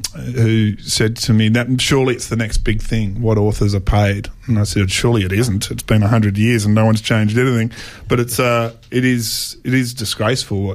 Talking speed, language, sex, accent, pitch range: 220 wpm, English, male, Australian, 105-120 Hz